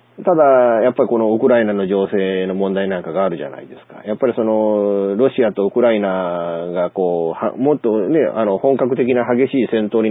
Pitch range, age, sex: 95-130 Hz, 40-59, male